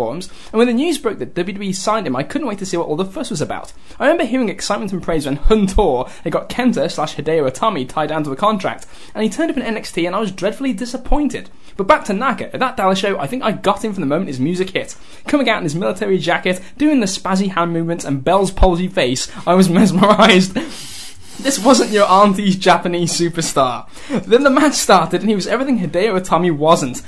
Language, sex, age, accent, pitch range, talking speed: English, male, 10-29, British, 165-225 Hz, 230 wpm